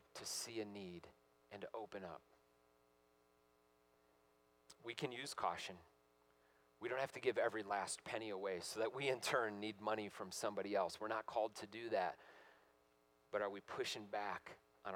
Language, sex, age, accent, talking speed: English, male, 40-59, American, 175 wpm